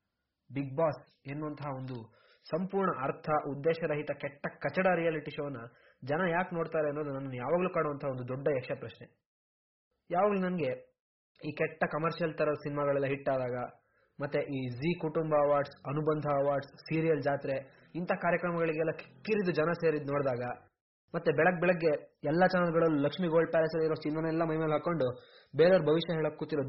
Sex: male